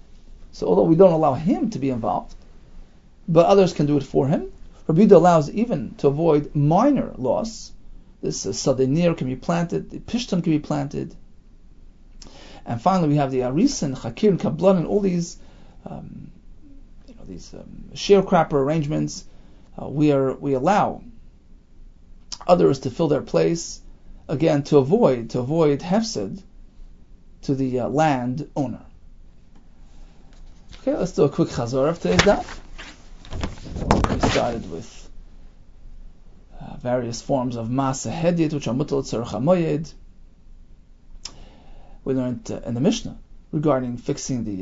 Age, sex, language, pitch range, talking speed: 40-59, male, English, 105-170 Hz, 140 wpm